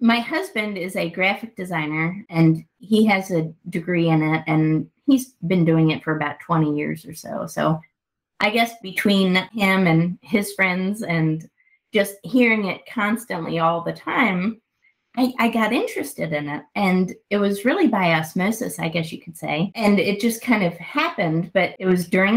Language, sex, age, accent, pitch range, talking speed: English, female, 30-49, American, 170-220 Hz, 180 wpm